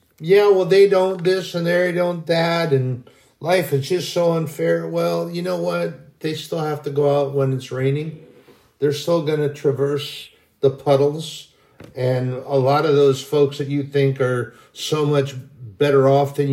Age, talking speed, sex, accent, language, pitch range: 50-69, 180 wpm, male, American, English, 130-155 Hz